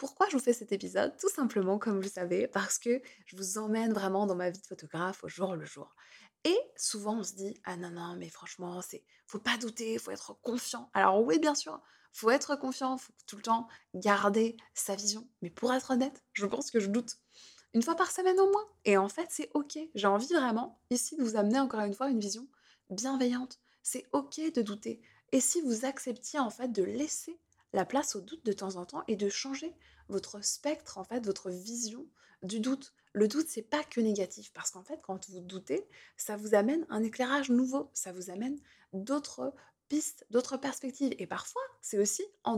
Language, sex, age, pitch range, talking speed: French, female, 20-39, 200-275 Hz, 220 wpm